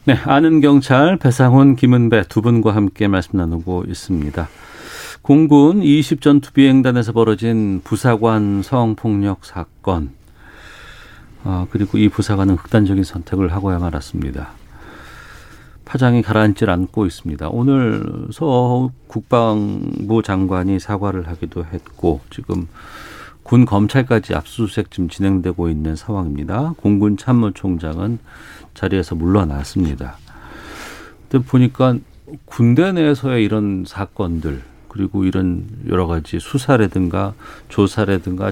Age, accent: 40-59, native